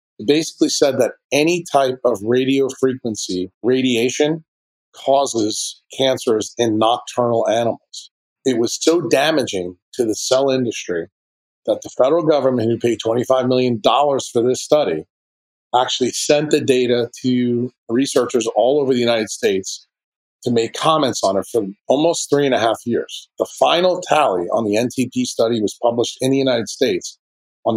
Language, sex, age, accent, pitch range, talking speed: English, male, 40-59, American, 115-140 Hz, 155 wpm